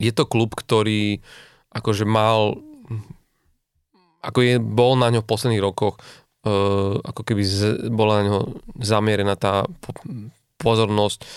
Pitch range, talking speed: 105-120 Hz, 125 wpm